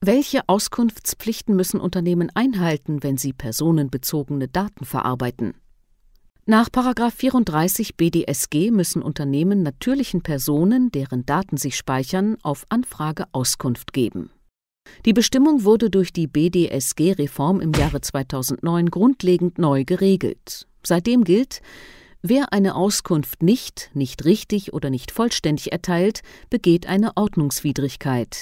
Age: 40-59